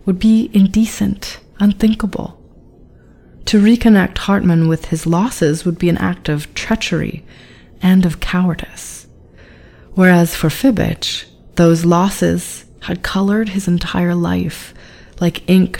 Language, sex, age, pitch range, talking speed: English, female, 30-49, 155-200 Hz, 120 wpm